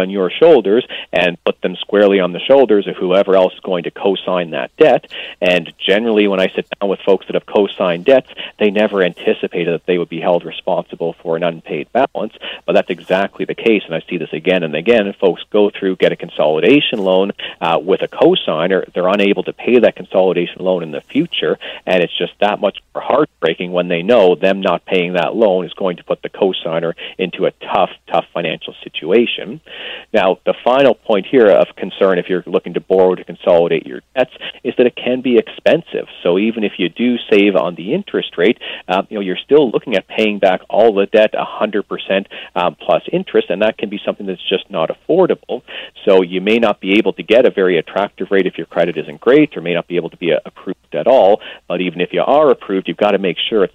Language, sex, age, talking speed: English, male, 40-59, 225 wpm